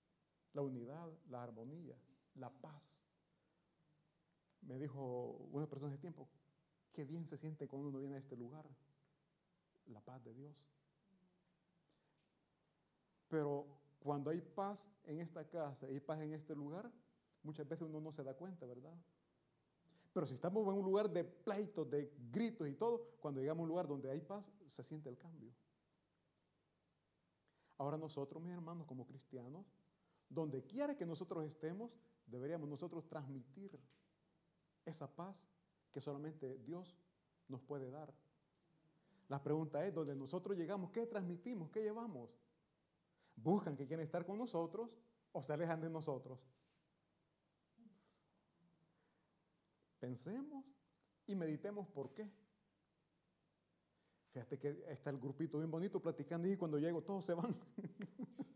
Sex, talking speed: male, 135 wpm